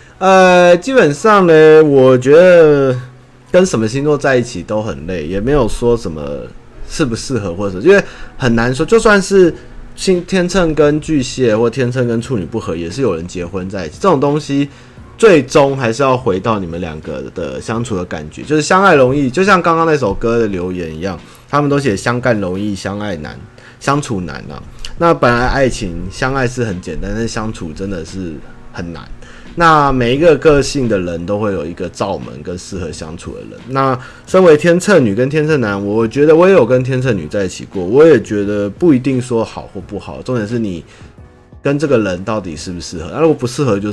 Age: 30-49